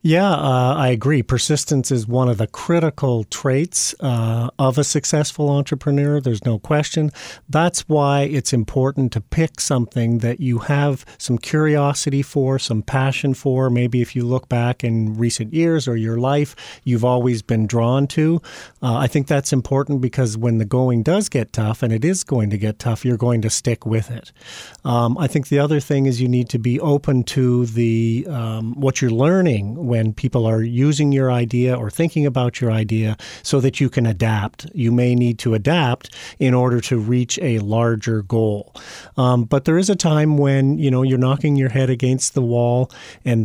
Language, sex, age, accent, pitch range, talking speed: English, male, 40-59, American, 120-140 Hz, 190 wpm